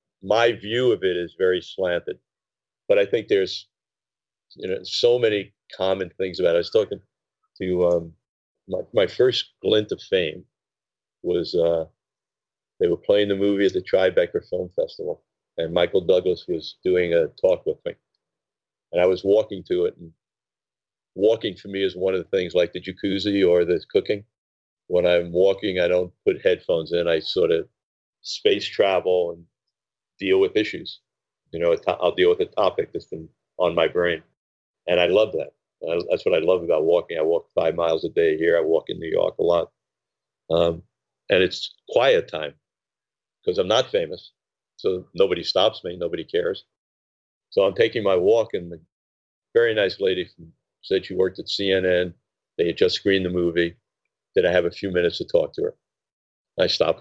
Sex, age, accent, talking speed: male, 40-59, American, 185 wpm